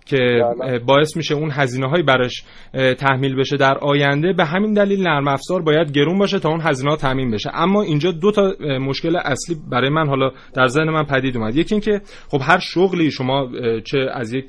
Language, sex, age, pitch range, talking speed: Persian, male, 30-49, 130-165 Hz, 200 wpm